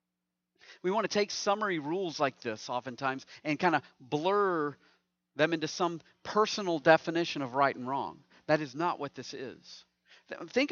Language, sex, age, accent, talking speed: English, male, 40-59, American, 160 wpm